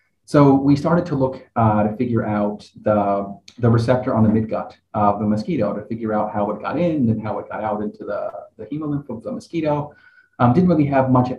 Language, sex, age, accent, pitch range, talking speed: English, male, 30-49, American, 105-125 Hz, 220 wpm